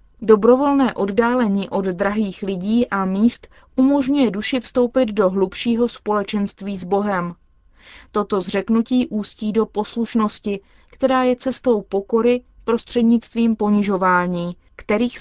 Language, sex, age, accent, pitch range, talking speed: Czech, female, 20-39, native, 195-235 Hz, 105 wpm